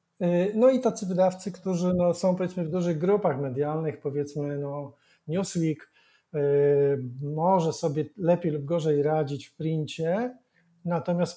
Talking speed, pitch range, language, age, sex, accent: 130 wpm, 145-170 Hz, Polish, 40-59, male, native